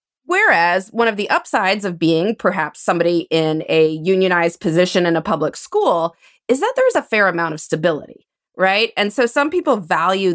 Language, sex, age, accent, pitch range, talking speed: English, female, 30-49, American, 160-205 Hz, 185 wpm